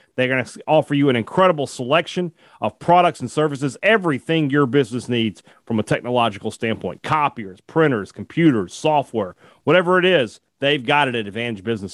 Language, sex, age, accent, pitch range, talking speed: English, male, 40-59, American, 115-170 Hz, 165 wpm